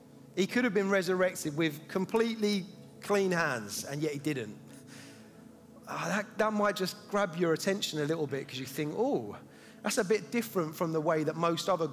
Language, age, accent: English, 30-49, British